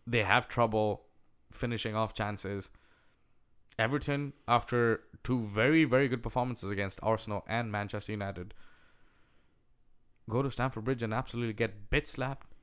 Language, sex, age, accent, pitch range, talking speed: English, male, 10-29, Indian, 110-130 Hz, 125 wpm